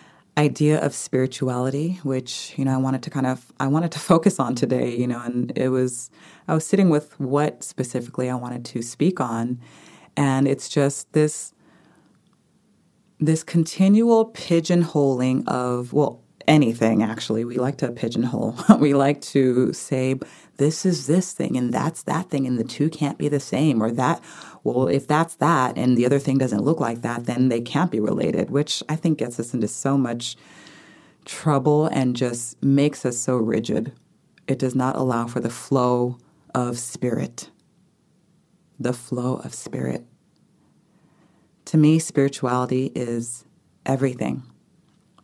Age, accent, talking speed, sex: 30-49, American, 160 wpm, female